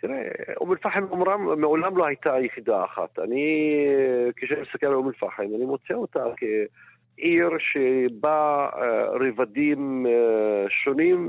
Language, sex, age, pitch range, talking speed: Hebrew, male, 50-69, 130-180 Hz, 115 wpm